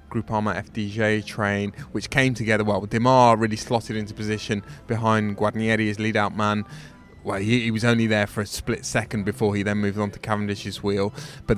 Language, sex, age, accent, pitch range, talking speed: English, male, 20-39, British, 105-115 Hz, 190 wpm